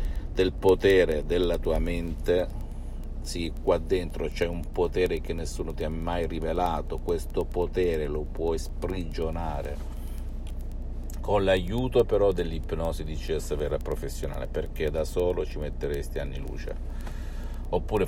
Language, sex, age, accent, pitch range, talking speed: Italian, male, 50-69, native, 75-95 Hz, 125 wpm